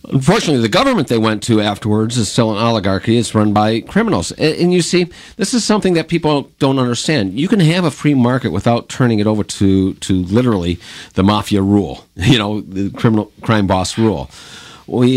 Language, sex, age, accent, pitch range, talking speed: English, male, 50-69, American, 95-125 Hz, 195 wpm